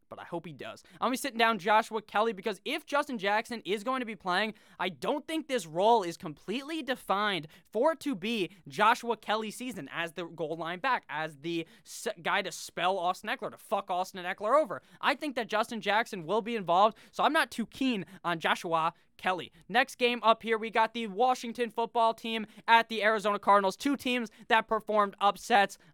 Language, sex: English, male